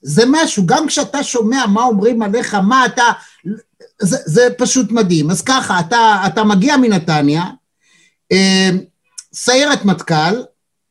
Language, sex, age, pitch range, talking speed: Hebrew, male, 50-69, 170-230 Hz, 125 wpm